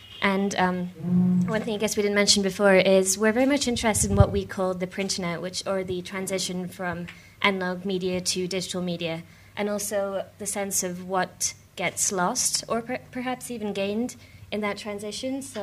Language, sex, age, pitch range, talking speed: English, female, 20-39, 180-210 Hz, 190 wpm